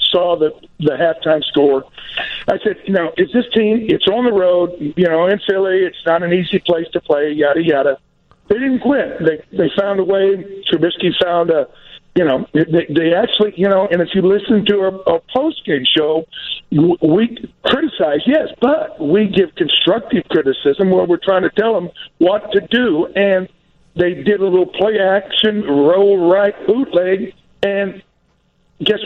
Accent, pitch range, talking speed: American, 170-210 Hz, 175 wpm